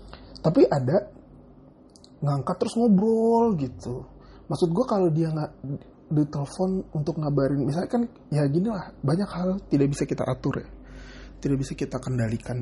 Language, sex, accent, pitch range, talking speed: Indonesian, male, native, 130-180 Hz, 135 wpm